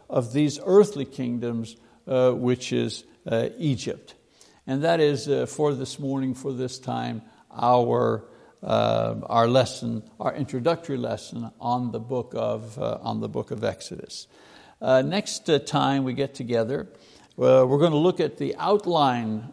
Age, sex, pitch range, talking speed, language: 60-79, male, 125-145 Hz, 155 wpm, English